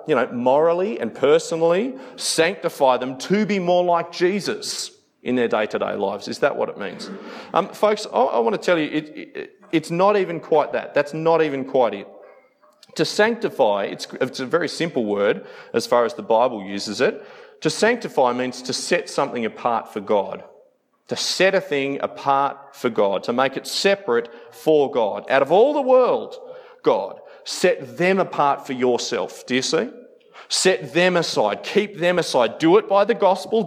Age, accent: 40-59, Australian